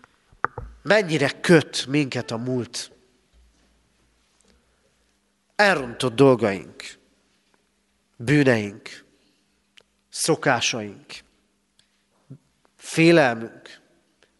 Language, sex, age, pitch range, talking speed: Hungarian, male, 40-59, 125-185 Hz, 40 wpm